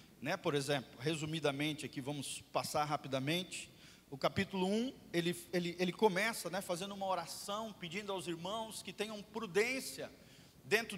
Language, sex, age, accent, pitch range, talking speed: Portuguese, male, 40-59, Brazilian, 180-230 Hz, 140 wpm